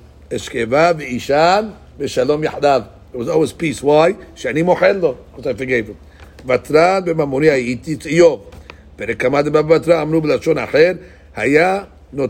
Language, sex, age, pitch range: English, male, 50-69, 120-170 Hz